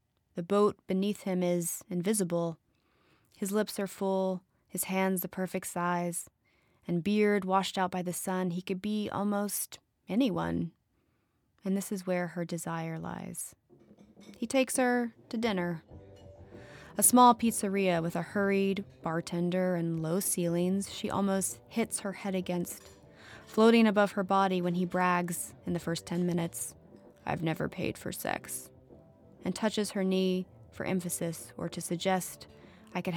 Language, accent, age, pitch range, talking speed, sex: English, American, 20-39, 170-200 Hz, 150 wpm, female